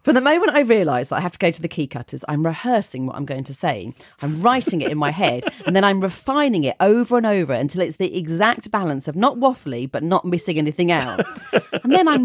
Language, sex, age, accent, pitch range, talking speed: English, female, 40-59, British, 170-250 Hz, 250 wpm